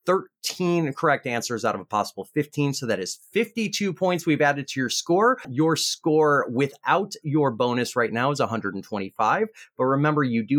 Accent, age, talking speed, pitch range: American, 30-49, 175 wpm, 120-170 Hz